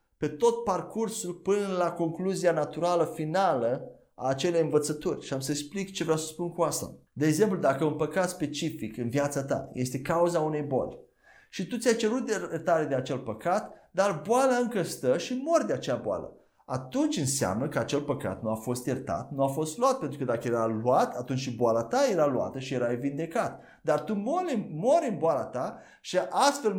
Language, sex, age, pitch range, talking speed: Romanian, male, 30-49, 145-215 Hz, 195 wpm